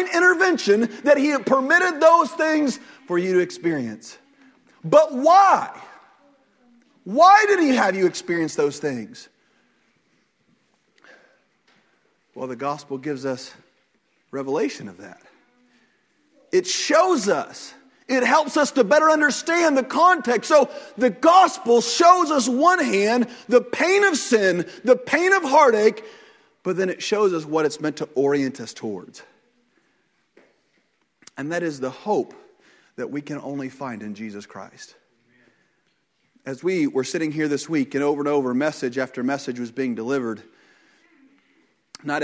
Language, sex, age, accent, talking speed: English, male, 40-59, American, 140 wpm